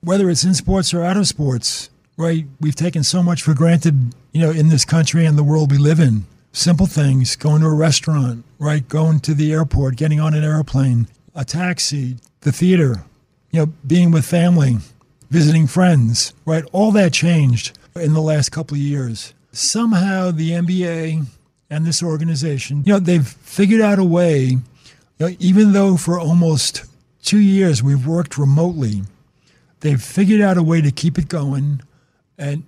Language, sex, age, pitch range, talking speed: English, male, 50-69, 140-175 Hz, 175 wpm